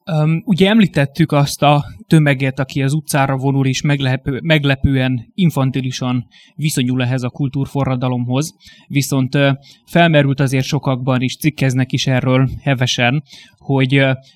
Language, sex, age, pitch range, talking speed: Hungarian, male, 20-39, 125-140 Hz, 115 wpm